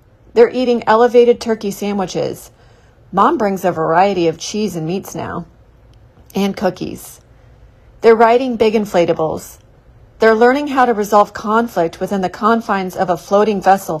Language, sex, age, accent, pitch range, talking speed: English, female, 30-49, American, 165-225 Hz, 140 wpm